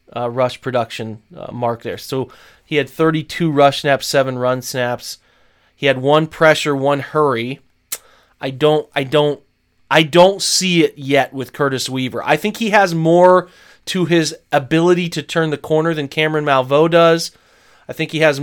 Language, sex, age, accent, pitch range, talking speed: English, male, 30-49, American, 135-165 Hz, 175 wpm